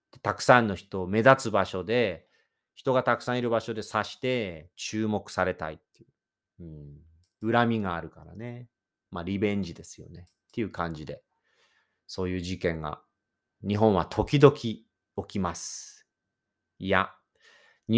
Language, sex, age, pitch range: Japanese, male, 40-59, 95-145 Hz